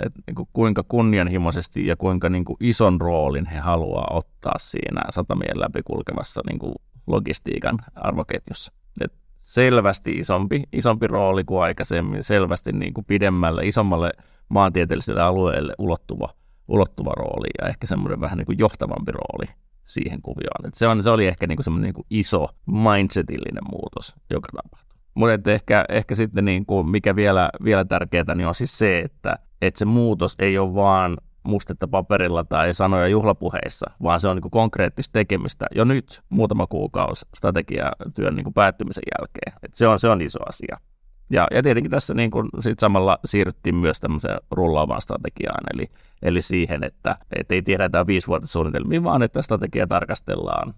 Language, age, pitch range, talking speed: Finnish, 30-49, 85-105 Hz, 150 wpm